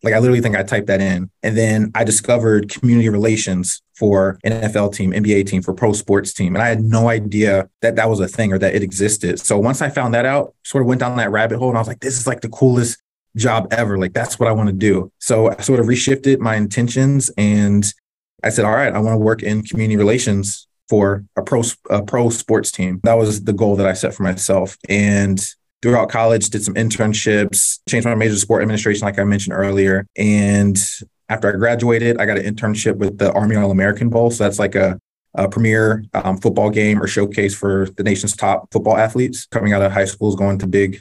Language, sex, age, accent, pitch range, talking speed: English, male, 20-39, American, 100-115 Hz, 230 wpm